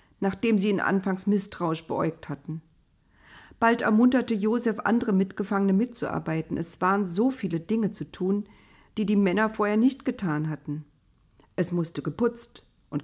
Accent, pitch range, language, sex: German, 155-210 Hz, German, female